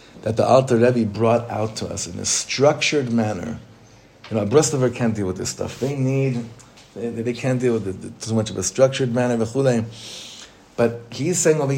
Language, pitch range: English, 115-145 Hz